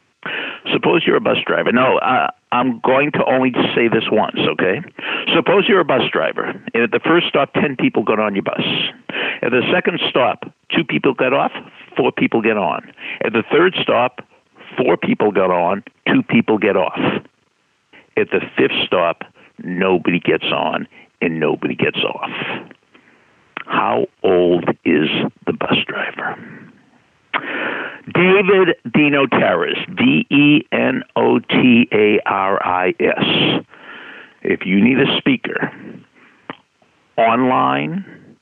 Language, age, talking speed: English, 60-79, 125 wpm